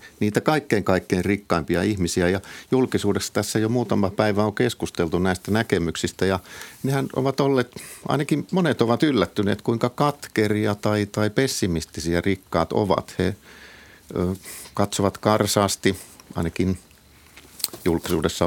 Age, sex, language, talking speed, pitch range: 50-69, male, Finnish, 115 wpm, 90-115 Hz